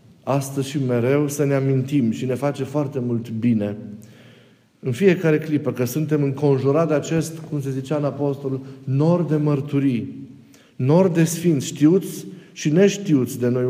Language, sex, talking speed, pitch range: Romanian, male, 160 wpm, 130-160 Hz